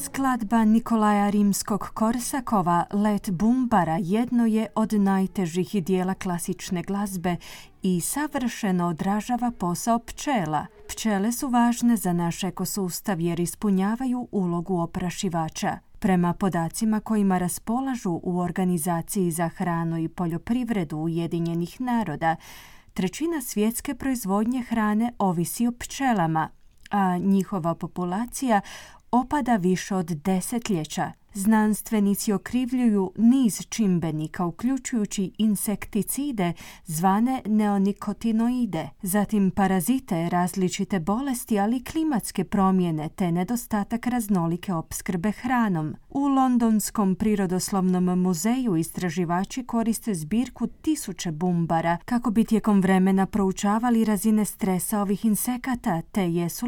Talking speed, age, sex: 100 wpm, 30-49, female